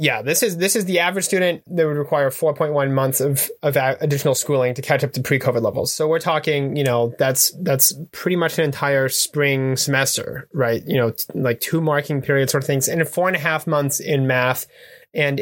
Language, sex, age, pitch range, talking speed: English, male, 20-39, 130-160 Hz, 220 wpm